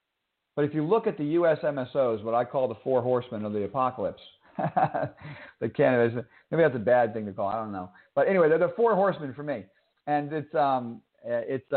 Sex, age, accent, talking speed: male, 50-69, American, 220 wpm